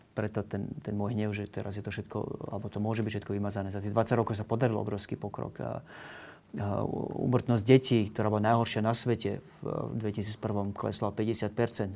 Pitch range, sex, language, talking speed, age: 105-125 Hz, male, Slovak, 170 wpm, 30-49